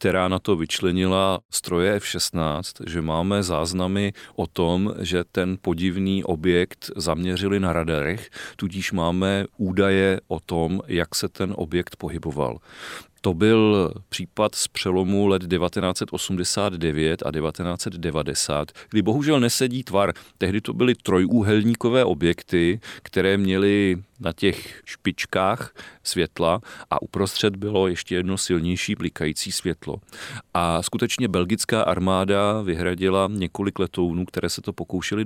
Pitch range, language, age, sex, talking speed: 90-110 Hz, English, 40-59, male, 120 wpm